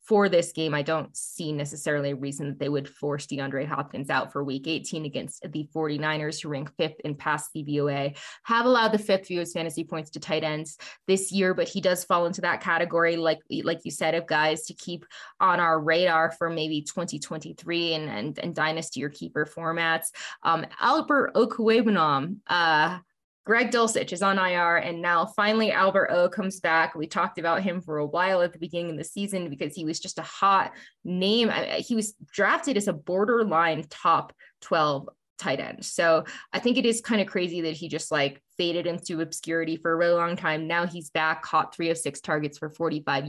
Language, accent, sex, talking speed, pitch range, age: English, American, female, 200 wpm, 155-185 Hz, 20-39